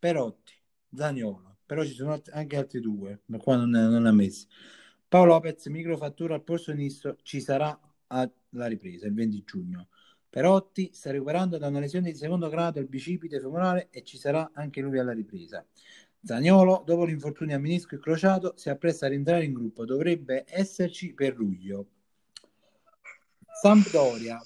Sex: male